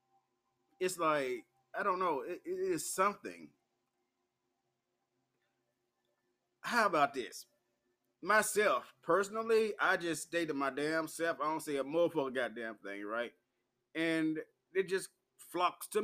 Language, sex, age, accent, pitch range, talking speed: English, male, 20-39, American, 125-195 Hz, 125 wpm